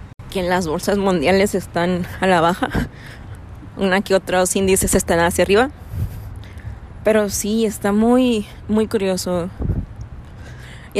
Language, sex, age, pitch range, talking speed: Spanish, female, 20-39, 190-230 Hz, 130 wpm